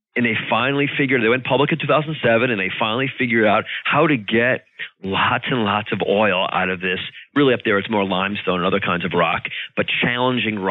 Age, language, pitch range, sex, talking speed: 30-49, English, 110-130 Hz, male, 215 wpm